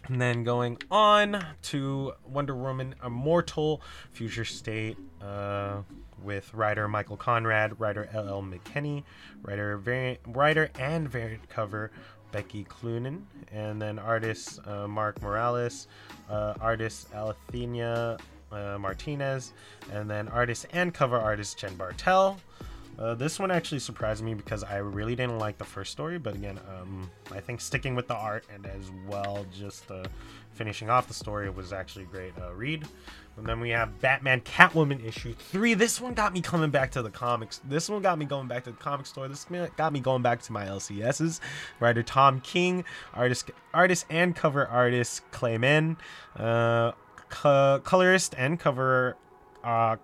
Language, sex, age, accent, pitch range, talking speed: English, male, 20-39, American, 105-140 Hz, 160 wpm